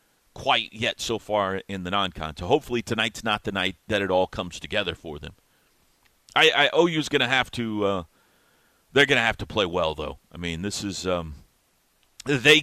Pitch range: 100-125 Hz